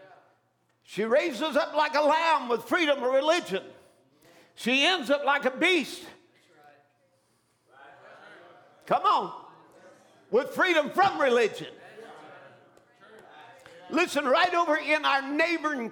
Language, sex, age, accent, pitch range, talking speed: English, male, 50-69, American, 230-305 Hz, 105 wpm